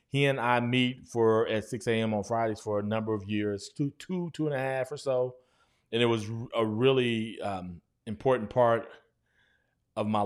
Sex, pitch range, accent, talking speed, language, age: male, 105-125 Hz, American, 195 wpm, English, 30-49